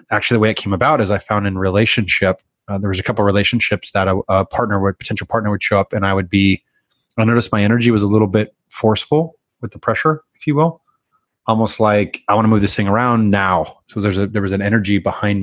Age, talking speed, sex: 30-49, 255 wpm, male